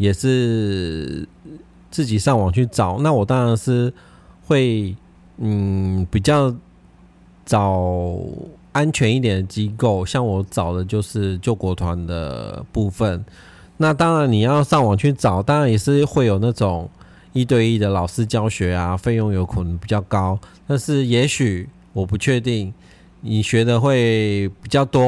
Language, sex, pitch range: Chinese, male, 95-130 Hz